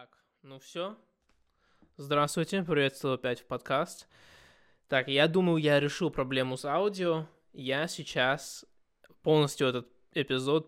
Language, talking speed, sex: Russian, 120 wpm, male